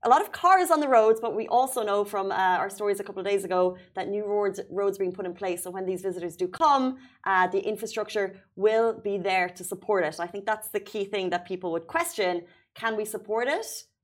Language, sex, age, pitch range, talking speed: Arabic, female, 30-49, 185-225 Hz, 245 wpm